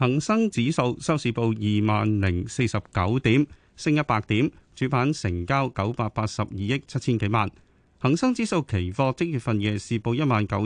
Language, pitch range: Chinese, 105-150 Hz